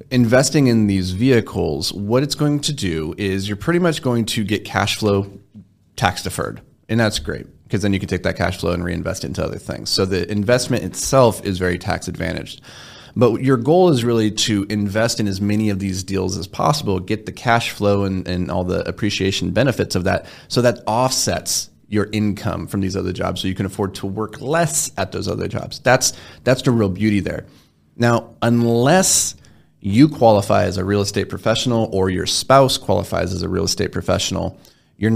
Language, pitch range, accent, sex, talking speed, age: English, 95-115 Hz, American, male, 200 wpm, 30-49